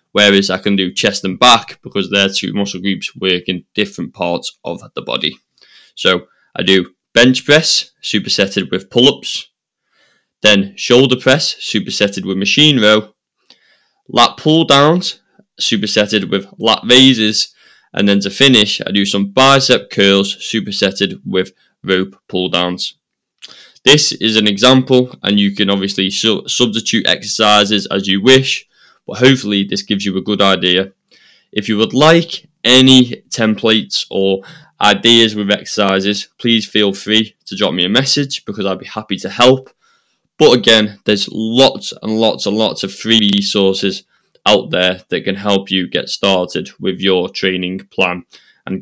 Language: English